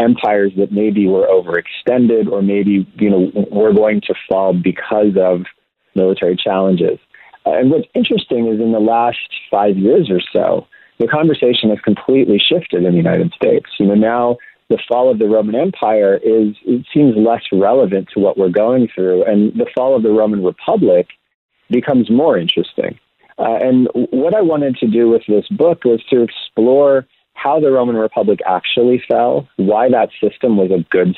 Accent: American